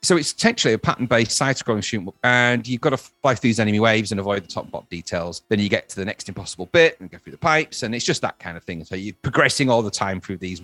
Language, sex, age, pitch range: English, male, 30-49, 100-140 Hz